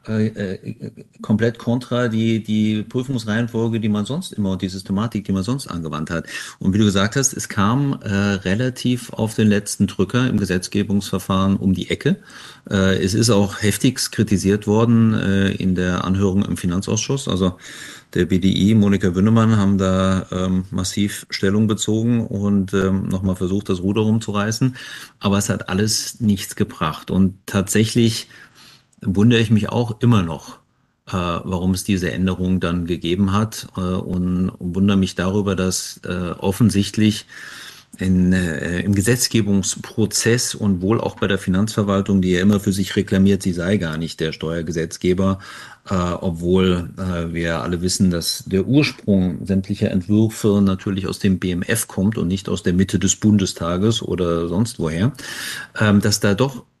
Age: 50-69